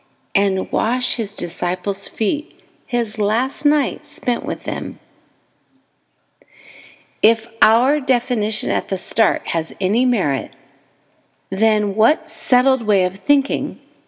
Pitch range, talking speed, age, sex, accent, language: 185-275 Hz, 110 wpm, 40-59, female, American, English